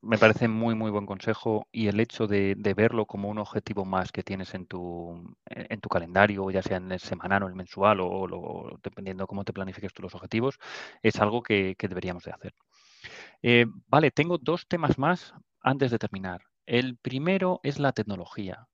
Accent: Spanish